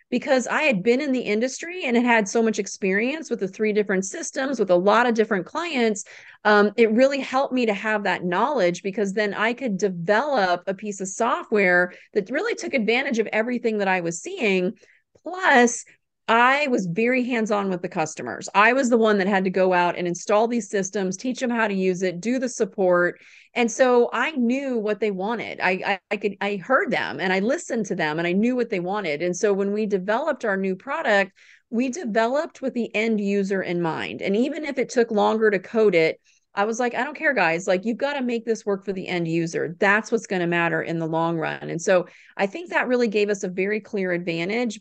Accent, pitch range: American, 190-240 Hz